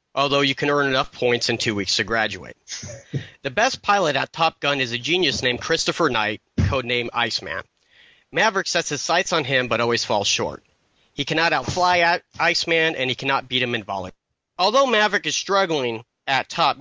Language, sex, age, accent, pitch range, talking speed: English, male, 40-59, American, 120-160 Hz, 185 wpm